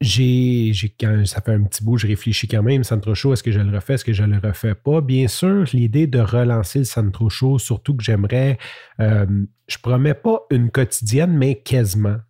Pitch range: 105-130 Hz